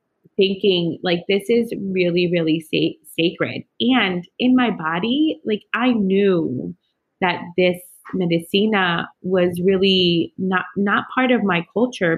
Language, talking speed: English, 130 wpm